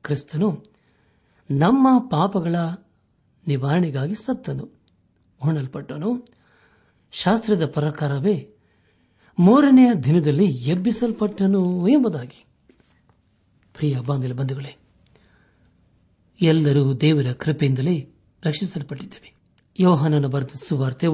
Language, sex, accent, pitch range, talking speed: Kannada, male, native, 135-190 Hz, 50 wpm